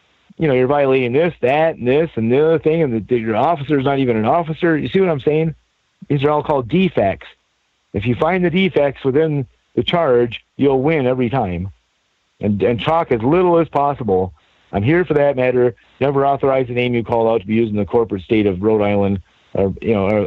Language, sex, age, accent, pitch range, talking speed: English, male, 40-59, American, 105-150 Hz, 225 wpm